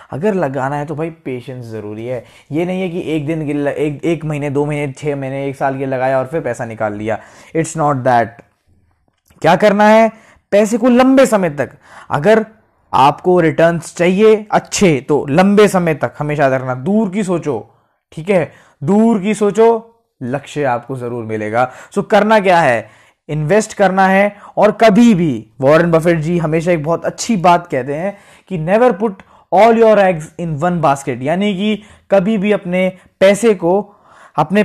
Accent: native